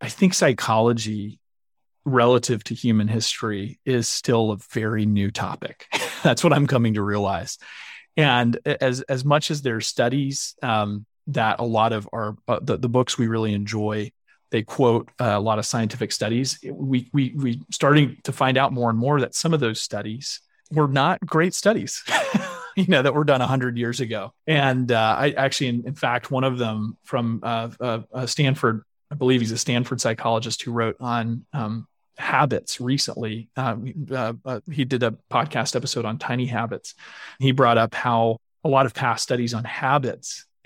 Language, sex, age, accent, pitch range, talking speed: English, male, 30-49, American, 115-135 Hz, 185 wpm